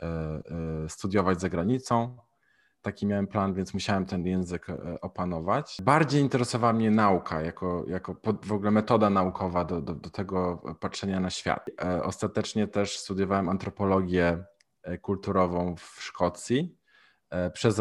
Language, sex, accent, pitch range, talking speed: Polish, male, native, 90-110 Hz, 120 wpm